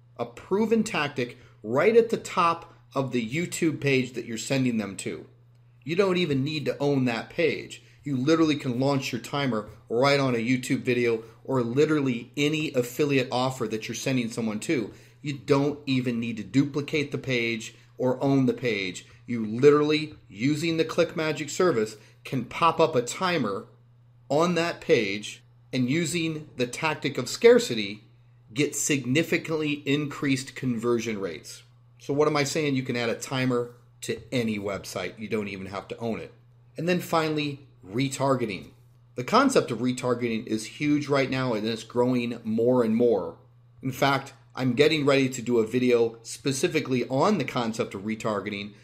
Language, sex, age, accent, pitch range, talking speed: English, male, 30-49, American, 120-145 Hz, 165 wpm